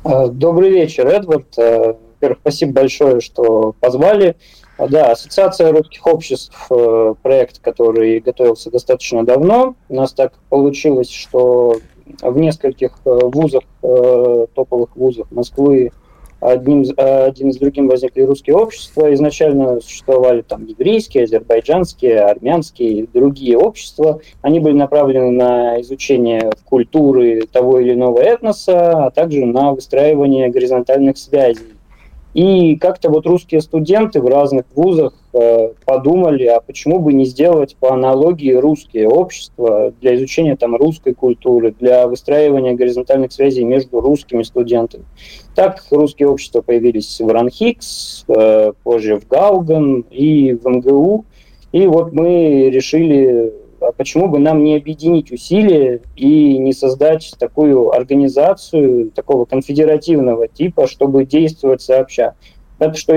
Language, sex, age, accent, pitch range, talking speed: Russian, male, 20-39, native, 125-155 Hz, 120 wpm